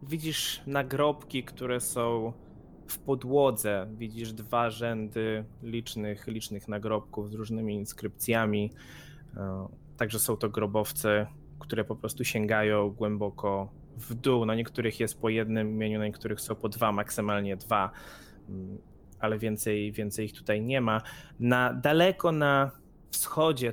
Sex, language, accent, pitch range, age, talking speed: male, Polish, native, 110-140 Hz, 20-39, 125 wpm